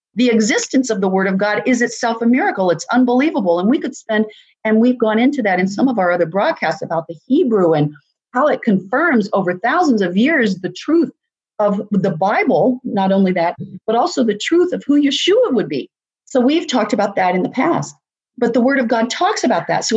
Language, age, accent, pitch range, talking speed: English, 40-59, American, 215-275 Hz, 220 wpm